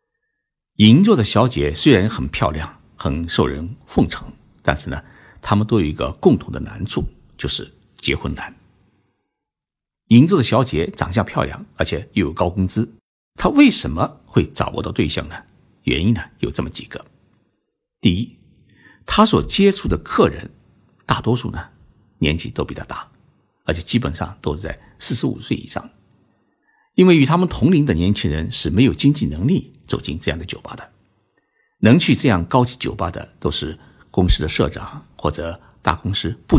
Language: Chinese